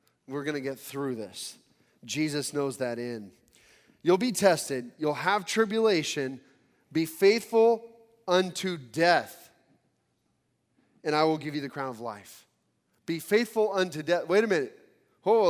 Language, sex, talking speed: English, male, 145 wpm